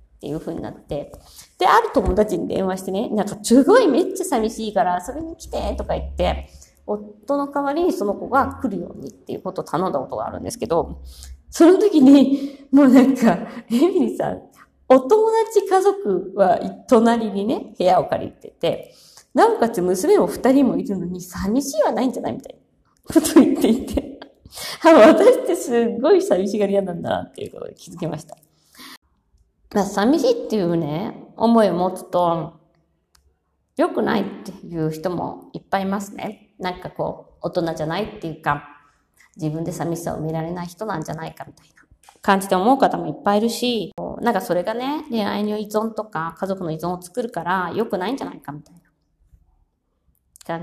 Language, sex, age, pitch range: Japanese, female, 20-39, 165-270 Hz